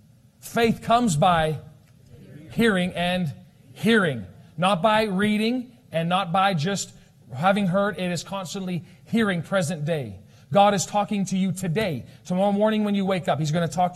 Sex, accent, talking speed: male, American, 160 wpm